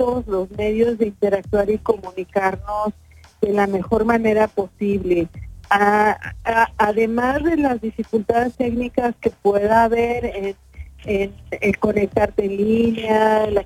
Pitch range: 195-220 Hz